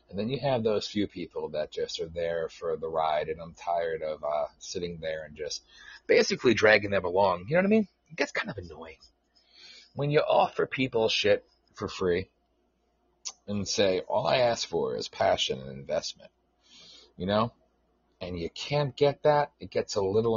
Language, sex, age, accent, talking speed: English, male, 30-49, American, 190 wpm